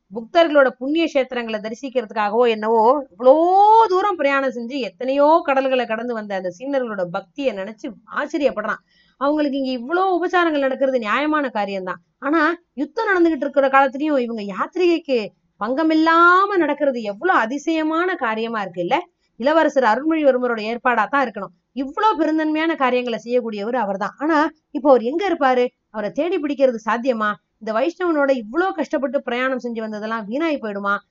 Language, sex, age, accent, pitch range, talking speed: Tamil, female, 30-49, native, 215-300 Hz, 125 wpm